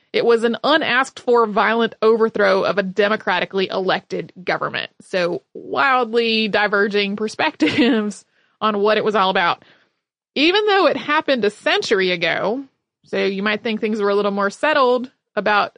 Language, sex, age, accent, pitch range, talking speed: English, female, 30-49, American, 200-240 Hz, 150 wpm